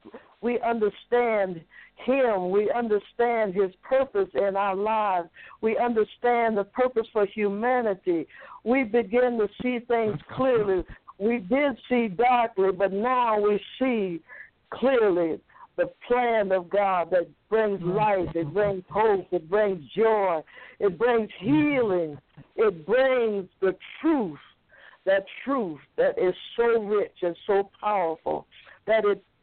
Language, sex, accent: English, female, American